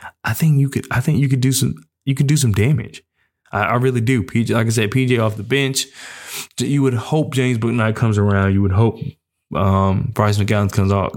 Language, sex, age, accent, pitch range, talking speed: English, male, 20-39, American, 105-130 Hz, 225 wpm